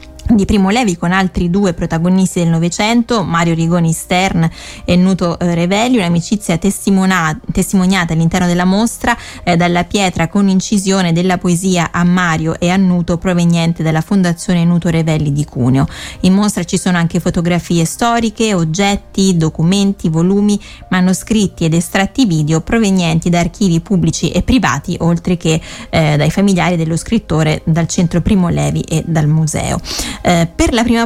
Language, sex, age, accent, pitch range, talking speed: Italian, female, 20-39, native, 170-200 Hz, 150 wpm